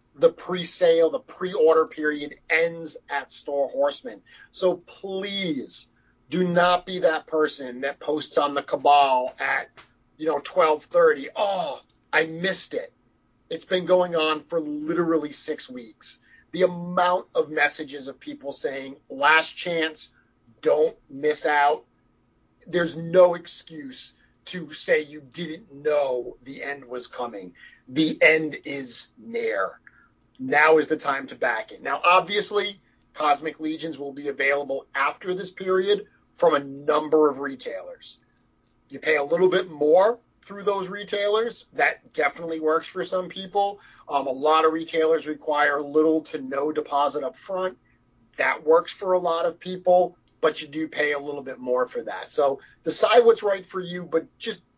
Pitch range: 145-185 Hz